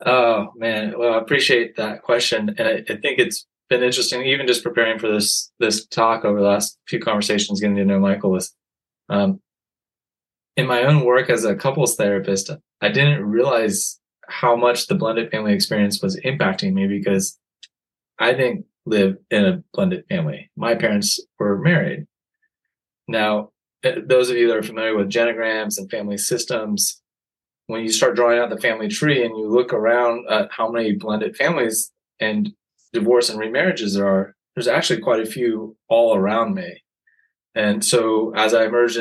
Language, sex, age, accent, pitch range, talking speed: English, male, 20-39, American, 105-125 Hz, 170 wpm